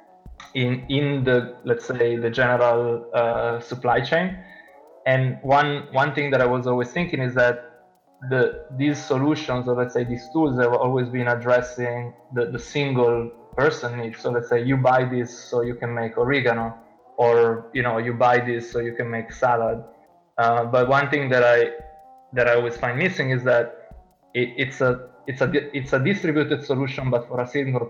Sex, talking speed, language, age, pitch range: male, 185 wpm, English, 20-39, 120-135 Hz